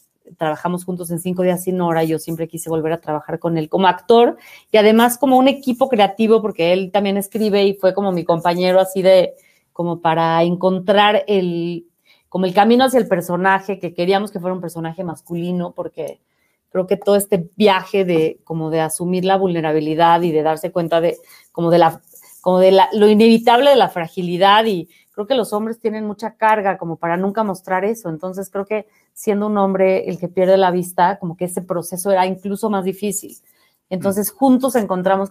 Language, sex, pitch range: Spanish, female, 170-205 Hz